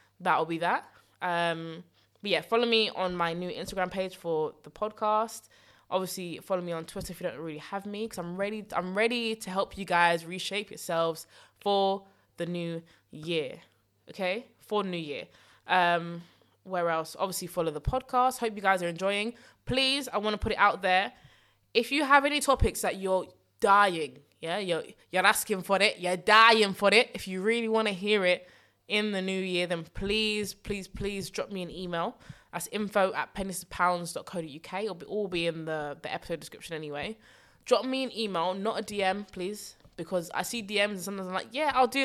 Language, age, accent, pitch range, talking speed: English, 20-39, British, 175-220 Hz, 195 wpm